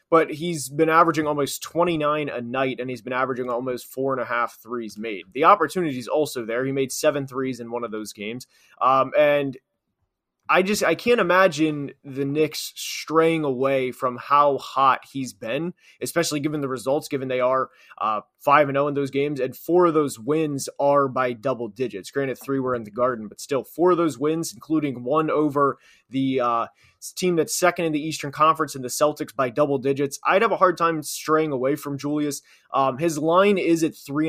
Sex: male